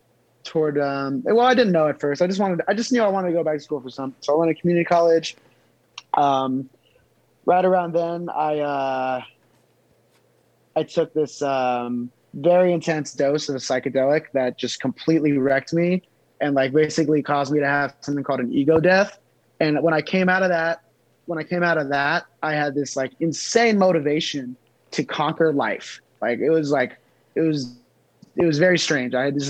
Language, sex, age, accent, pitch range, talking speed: English, male, 20-39, American, 140-175 Hz, 195 wpm